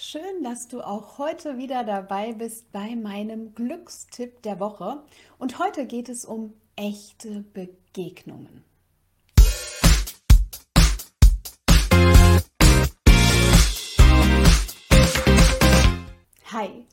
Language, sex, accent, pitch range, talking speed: German, female, German, 190-245 Hz, 75 wpm